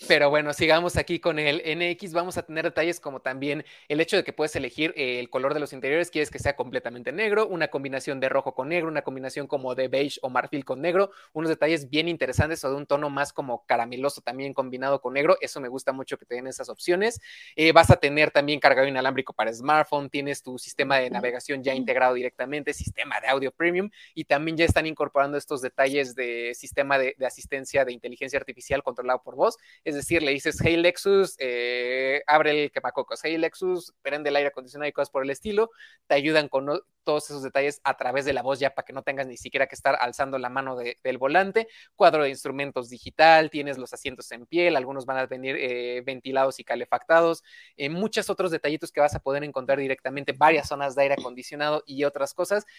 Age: 20-39